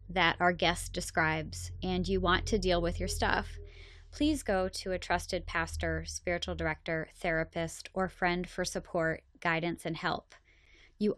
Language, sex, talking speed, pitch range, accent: English, female, 155 wpm, 155-210 Hz, American